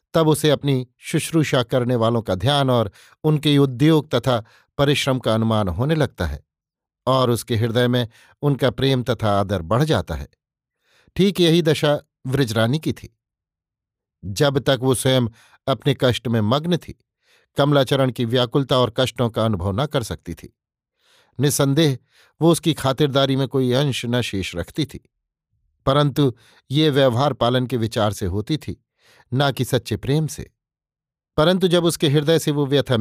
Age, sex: 50-69, male